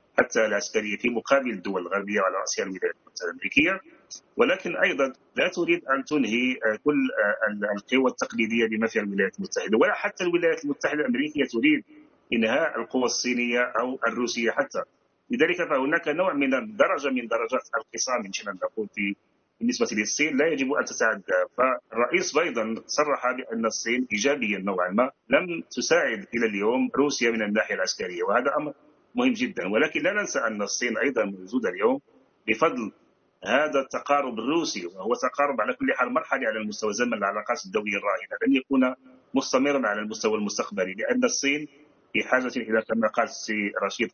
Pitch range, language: 110-170 Hz, English